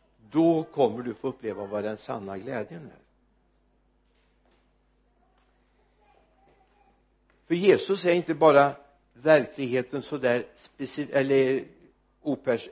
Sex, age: male, 60-79